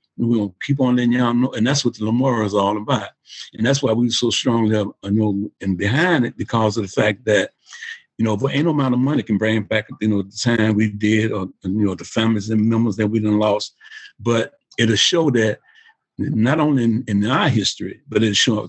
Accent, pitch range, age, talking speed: American, 105-135 Hz, 50-69, 240 wpm